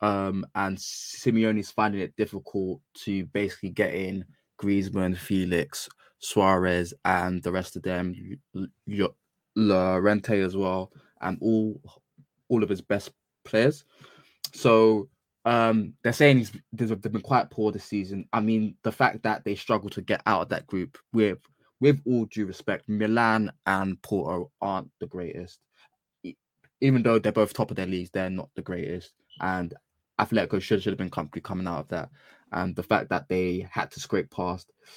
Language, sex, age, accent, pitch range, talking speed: English, male, 20-39, British, 95-115 Hz, 165 wpm